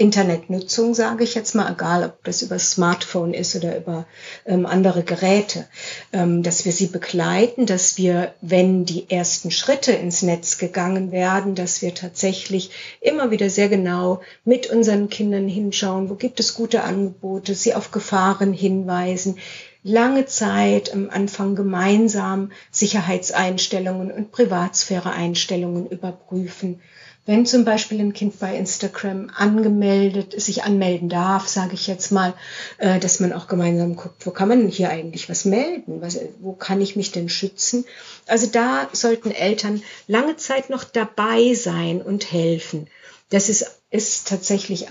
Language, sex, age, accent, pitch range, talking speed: German, female, 50-69, German, 180-215 Hz, 145 wpm